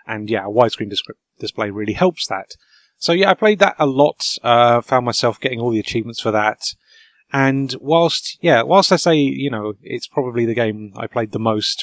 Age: 30-49